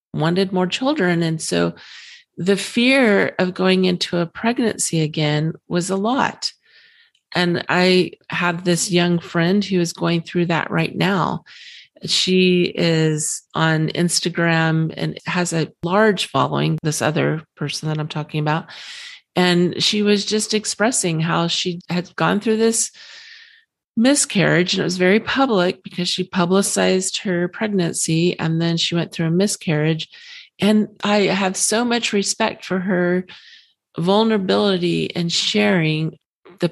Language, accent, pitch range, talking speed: English, American, 170-215 Hz, 140 wpm